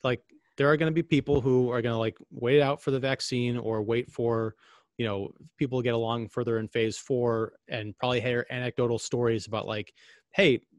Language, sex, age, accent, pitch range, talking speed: English, male, 30-49, American, 120-145 Hz, 200 wpm